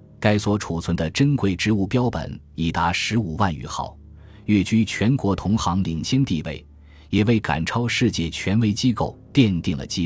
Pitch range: 85-115 Hz